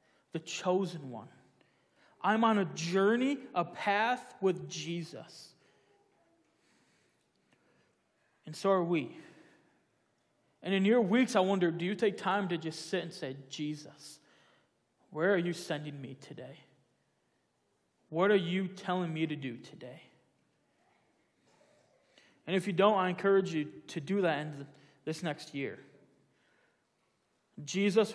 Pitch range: 160-210 Hz